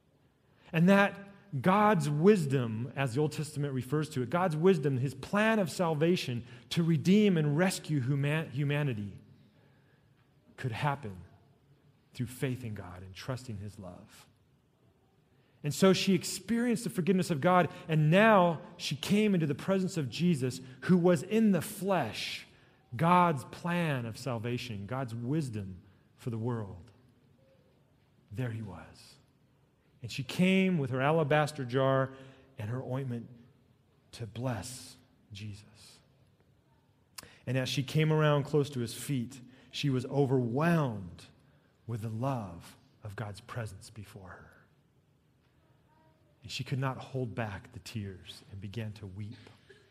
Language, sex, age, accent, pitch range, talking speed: English, male, 30-49, American, 120-155 Hz, 135 wpm